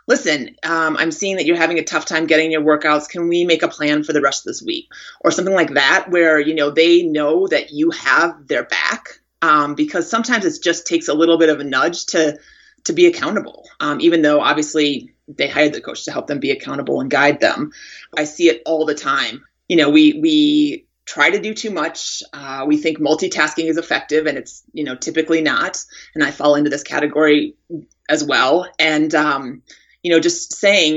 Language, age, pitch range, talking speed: English, 30-49, 150-190 Hz, 215 wpm